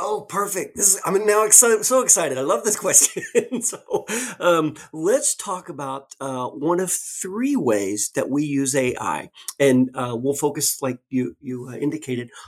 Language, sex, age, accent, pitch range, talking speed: English, male, 40-59, American, 135-205 Hz, 170 wpm